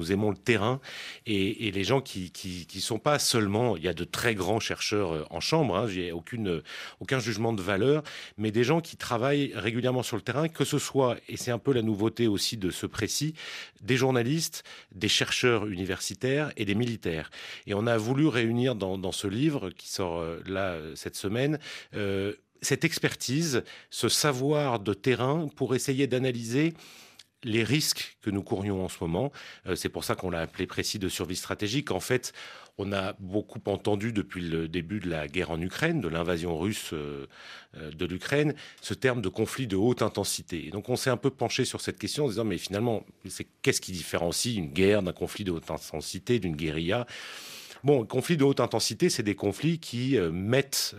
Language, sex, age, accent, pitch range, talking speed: French, male, 30-49, French, 95-130 Hz, 195 wpm